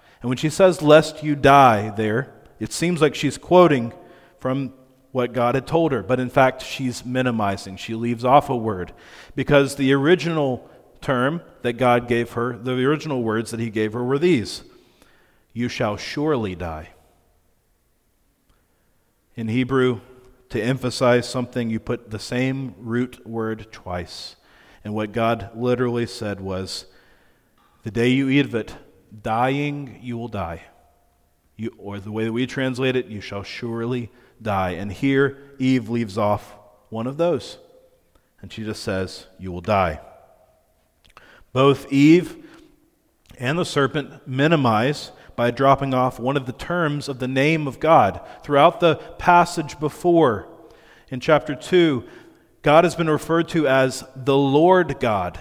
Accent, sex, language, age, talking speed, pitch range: American, male, English, 40-59, 150 wpm, 110-140 Hz